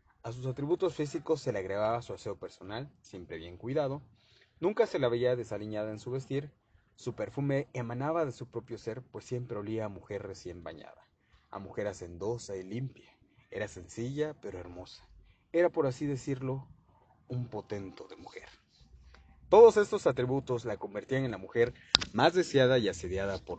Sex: male